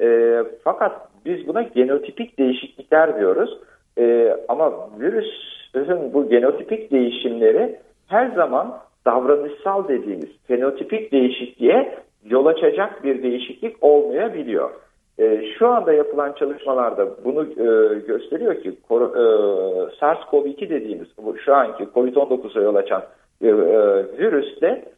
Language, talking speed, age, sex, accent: Turkish, 90 wpm, 50-69, male, native